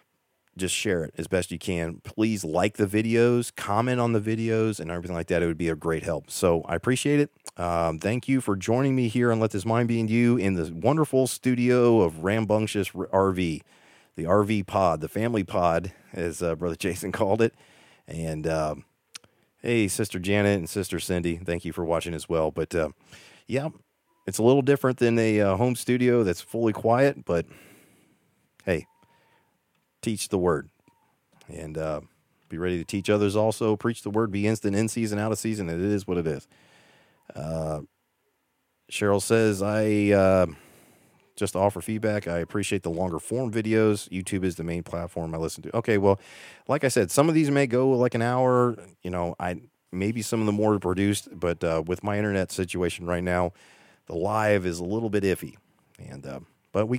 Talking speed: 195 wpm